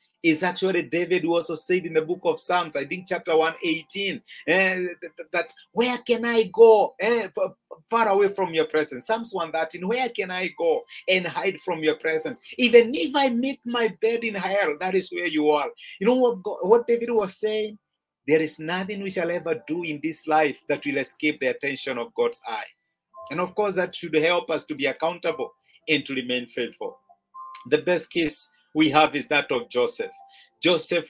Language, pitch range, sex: English, 160-230 Hz, male